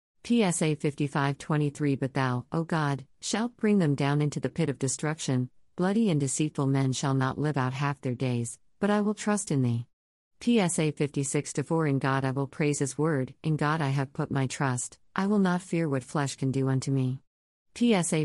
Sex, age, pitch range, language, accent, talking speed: female, 50-69, 130-160 Hz, English, American, 205 wpm